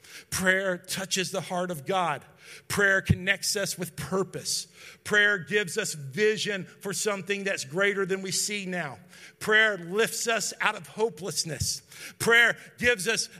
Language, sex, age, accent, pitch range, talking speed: English, male, 50-69, American, 150-200 Hz, 145 wpm